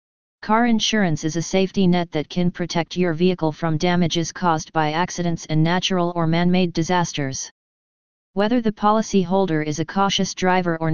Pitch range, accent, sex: 165-195 Hz, American, female